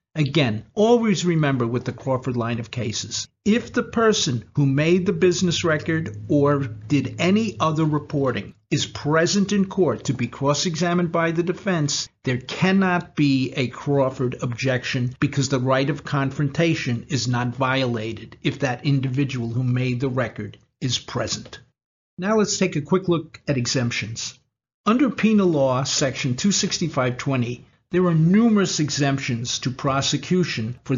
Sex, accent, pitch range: male, American, 130-180 Hz